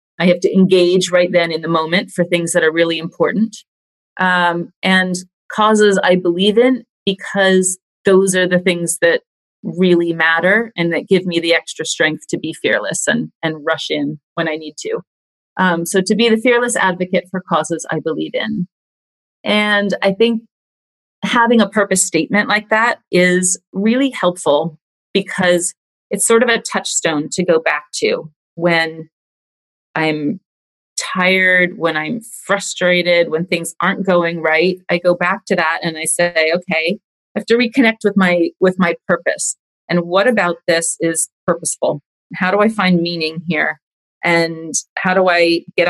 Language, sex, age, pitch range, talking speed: English, female, 30-49, 165-200 Hz, 165 wpm